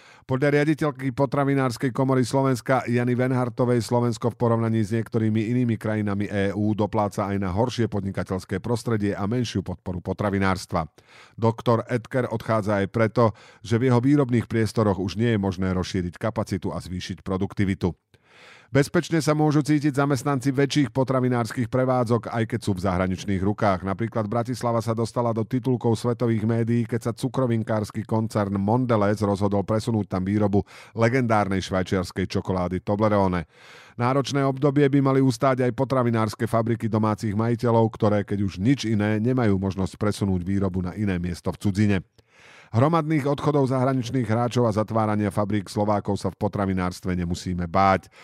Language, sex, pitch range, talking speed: Slovak, male, 100-125 Hz, 145 wpm